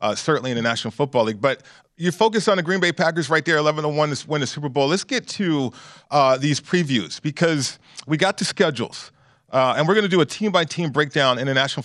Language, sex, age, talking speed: English, male, 40-59, 235 wpm